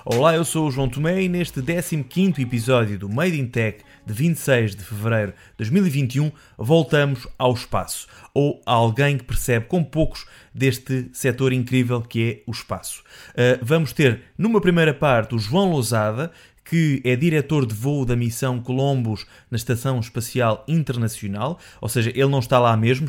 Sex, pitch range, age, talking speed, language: male, 115-145 Hz, 30-49, 165 wpm, Portuguese